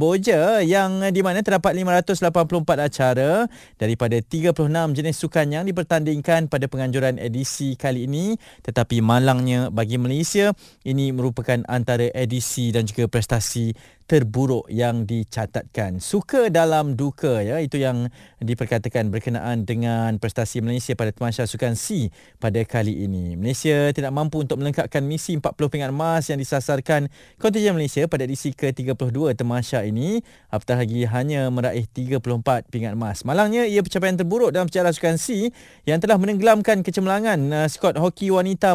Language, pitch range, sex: Malay, 125-165 Hz, male